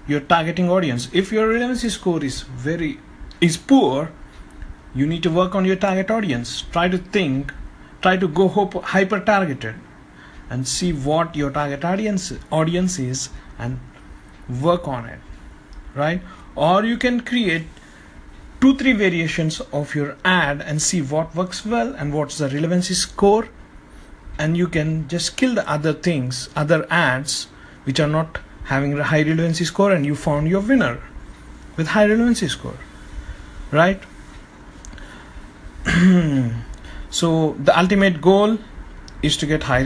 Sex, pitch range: male, 130-180 Hz